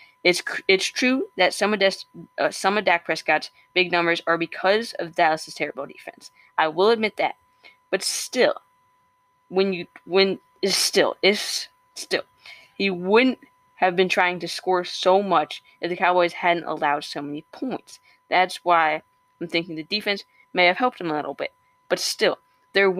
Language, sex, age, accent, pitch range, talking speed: English, female, 10-29, American, 165-210 Hz, 170 wpm